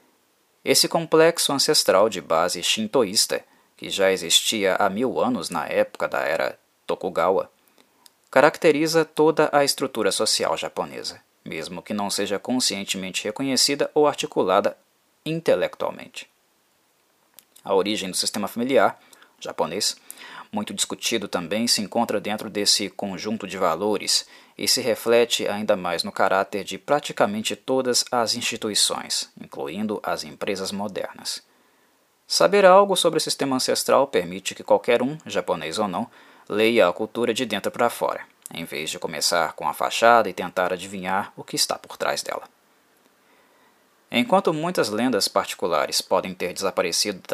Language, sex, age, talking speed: Portuguese, male, 20-39, 135 wpm